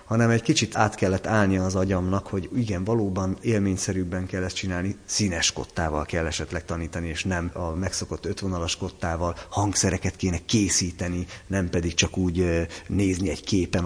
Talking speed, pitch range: 155 wpm, 90-110 Hz